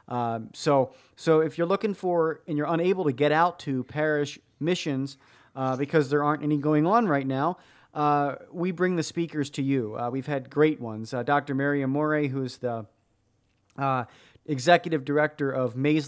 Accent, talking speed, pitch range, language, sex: American, 180 wpm, 125-155 Hz, English, male